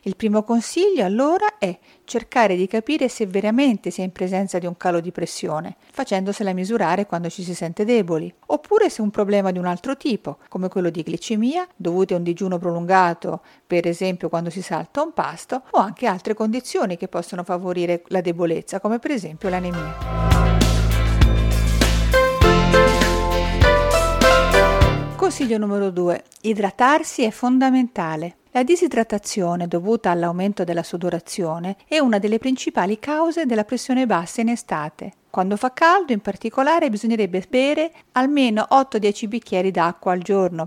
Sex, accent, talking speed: female, native, 145 wpm